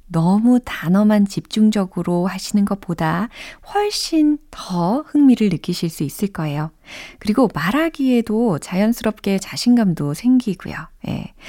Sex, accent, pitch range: female, native, 170-240 Hz